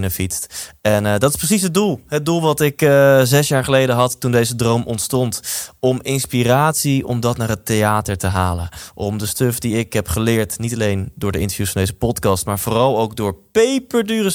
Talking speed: 215 wpm